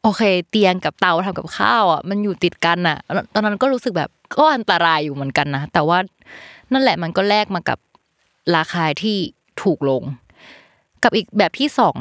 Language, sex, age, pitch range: Thai, female, 20-39, 160-215 Hz